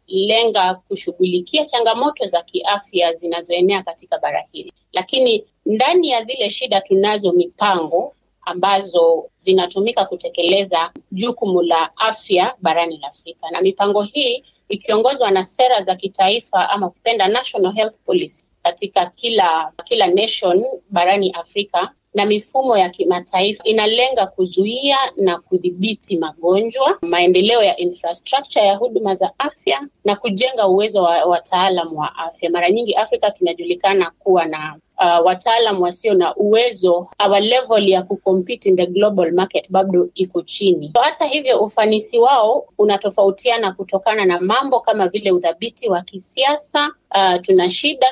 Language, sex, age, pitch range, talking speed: Swahili, female, 30-49, 180-230 Hz, 130 wpm